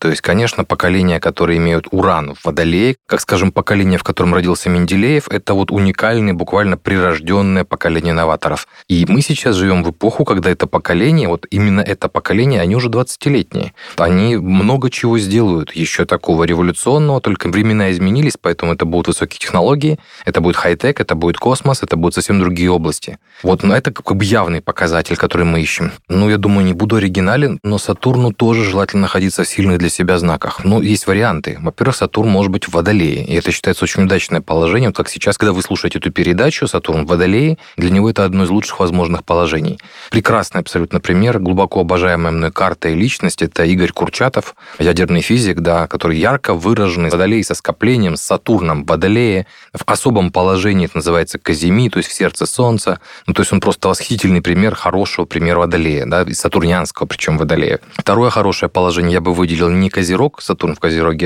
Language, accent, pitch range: Russian, native, 85-105 Hz